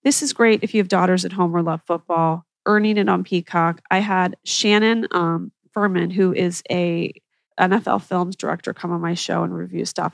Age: 30-49